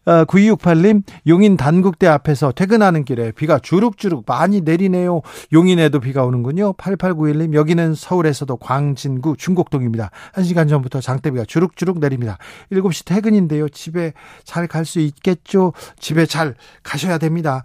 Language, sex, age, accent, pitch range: Korean, male, 40-59, native, 135-175 Hz